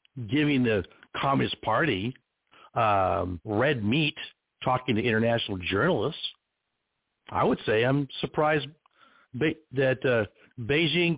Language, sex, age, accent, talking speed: English, male, 60-79, American, 100 wpm